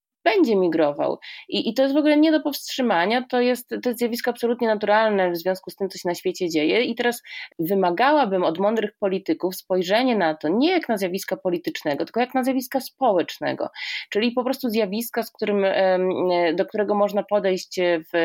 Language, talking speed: Polish, 185 wpm